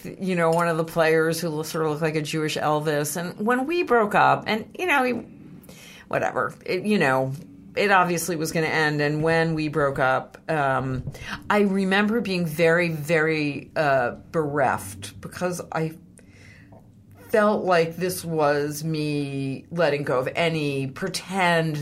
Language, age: English, 50-69